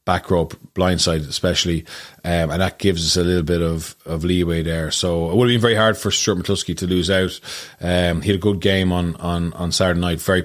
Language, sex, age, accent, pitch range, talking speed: English, male, 30-49, Irish, 80-90 Hz, 235 wpm